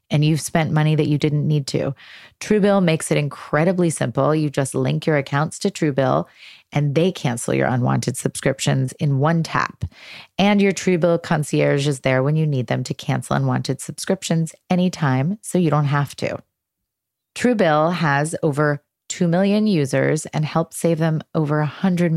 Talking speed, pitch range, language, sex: 170 wpm, 140-170 Hz, English, female